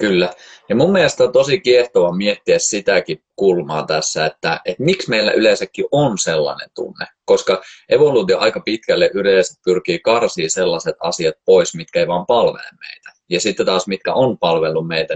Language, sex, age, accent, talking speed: Finnish, male, 20-39, native, 160 wpm